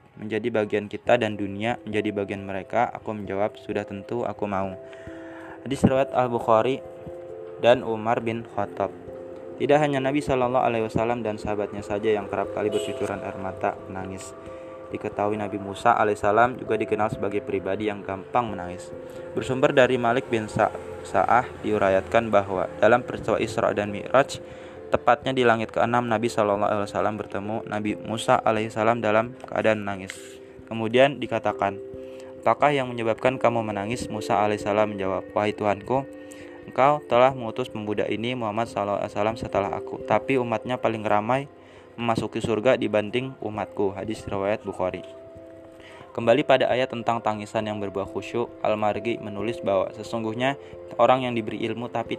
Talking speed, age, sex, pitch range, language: 140 wpm, 20-39, male, 100-120 Hz, Indonesian